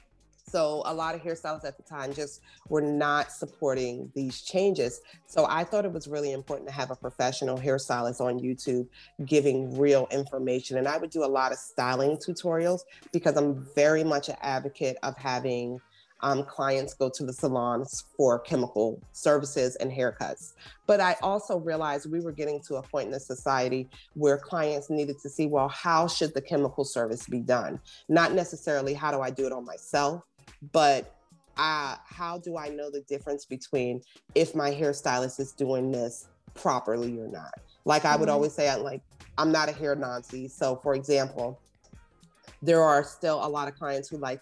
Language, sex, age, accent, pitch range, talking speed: English, female, 30-49, American, 130-150 Hz, 180 wpm